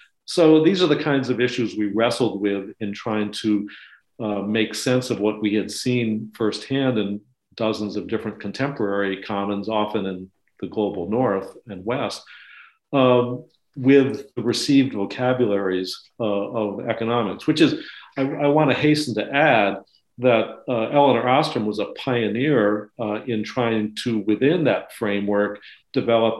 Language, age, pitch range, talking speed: English, 50-69, 105-125 Hz, 150 wpm